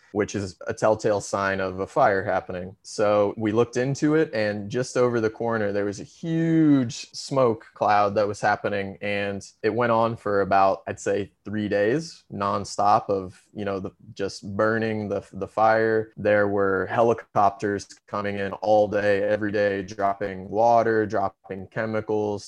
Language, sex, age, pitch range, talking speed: English, male, 20-39, 100-110 Hz, 160 wpm